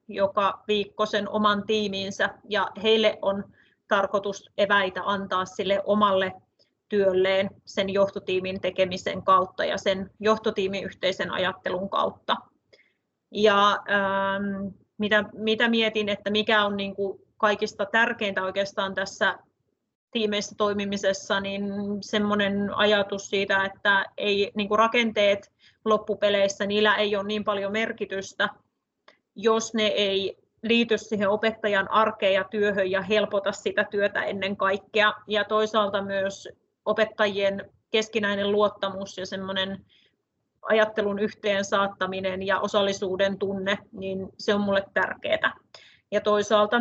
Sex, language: female, Finnish